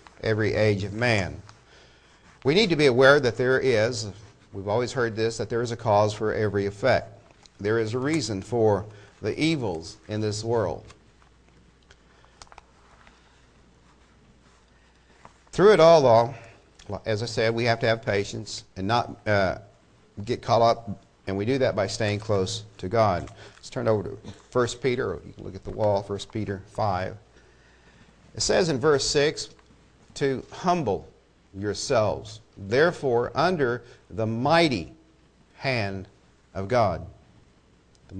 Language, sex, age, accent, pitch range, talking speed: English, male, 50-69, American, 95-120 Hz, 145 wpm